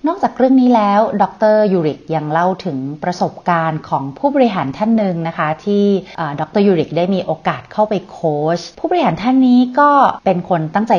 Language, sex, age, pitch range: Thai, female, 30-49, 160-215 Hz